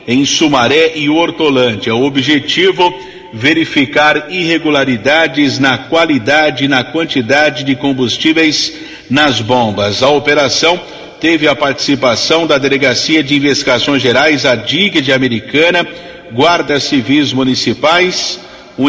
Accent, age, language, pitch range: Brazilian, 50-69, Portuguese, 135-165 Hz